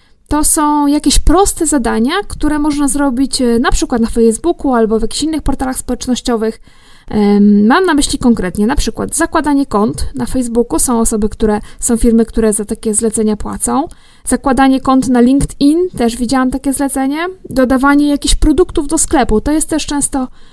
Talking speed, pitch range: 160 wpm, 235-300 Hz